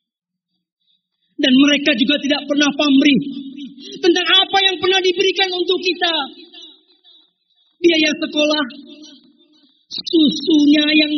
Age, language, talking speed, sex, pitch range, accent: 40-59, Indonesian, 90 wpm, male, 250-330 Hz, native